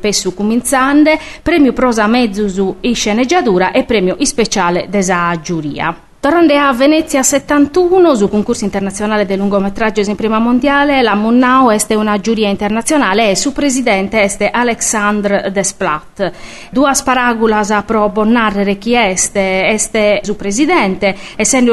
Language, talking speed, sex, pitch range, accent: Italian, 135 wpm, female, 195-245 Hz, native